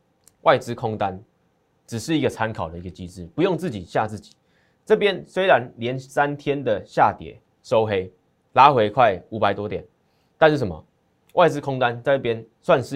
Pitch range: 100-140 Hz